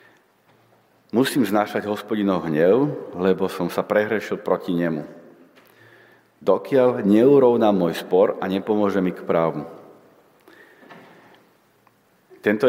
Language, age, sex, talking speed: Slovak, 40-59, male, 95 wpm